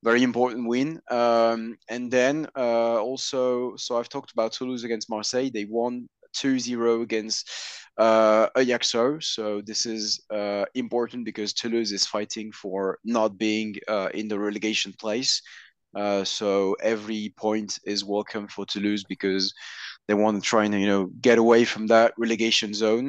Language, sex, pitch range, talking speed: English, male, 105-125 Hz, 155 wpm